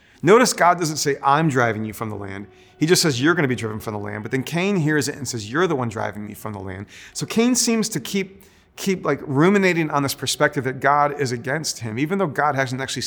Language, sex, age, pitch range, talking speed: English, male, 40-59, 115-155 Hz, 260 wpm